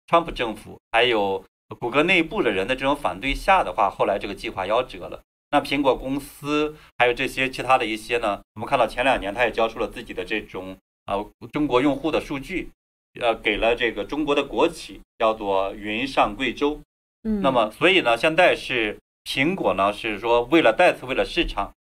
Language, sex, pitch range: Chinese, male, 105-150 Hz